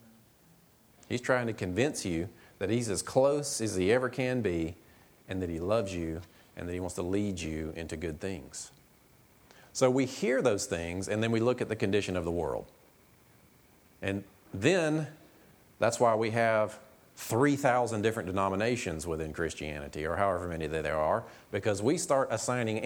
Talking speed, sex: 170 wpm, male